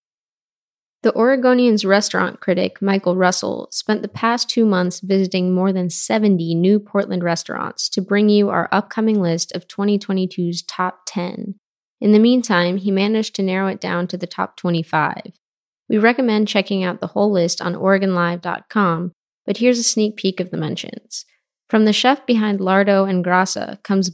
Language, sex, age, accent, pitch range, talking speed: English, female, 20-39, American, 180-210 Hz, 165 wpm